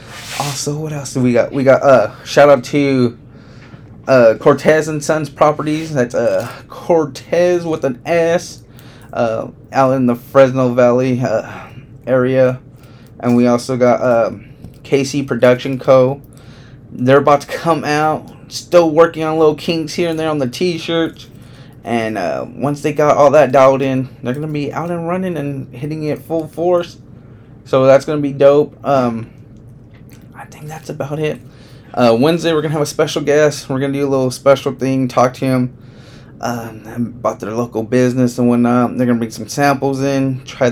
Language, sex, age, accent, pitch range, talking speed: English, male, 20-39, American, 125-155 Hz, 180 wpm